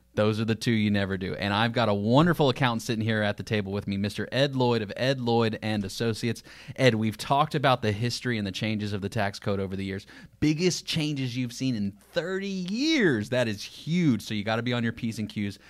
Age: 30-49